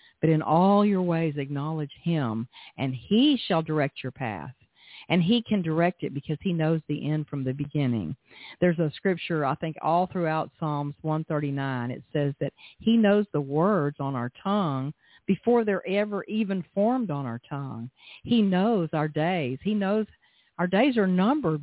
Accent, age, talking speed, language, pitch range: American, 50-69, 175 wpm, English, 145-190 Hz